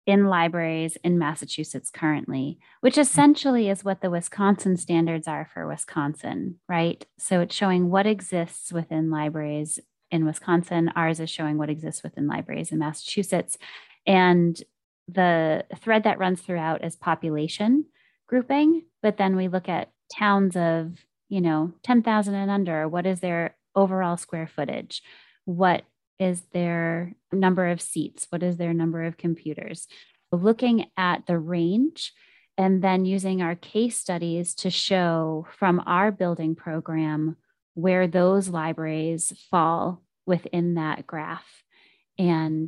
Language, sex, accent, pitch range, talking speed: English, female, American, 165-195 Hz, 135 wpm